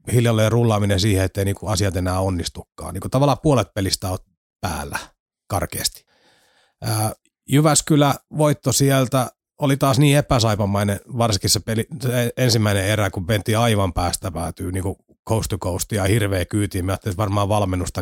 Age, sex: 30-49, male